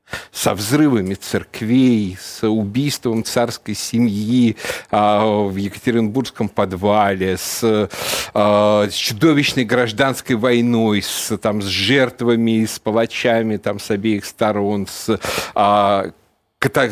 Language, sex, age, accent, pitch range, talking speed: Russian, male, 50-69, native, 100-125 Hz, 95 wpm